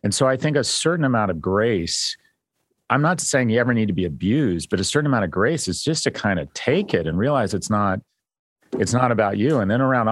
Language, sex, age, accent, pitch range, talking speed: English, male, 40-59, American, 90-120 Hz, 250 wpm